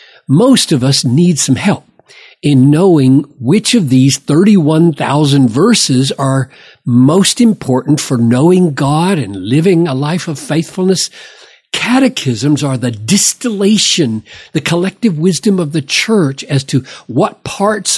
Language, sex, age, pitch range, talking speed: English, male, 50-69, 130-180 Hz, 130 wpm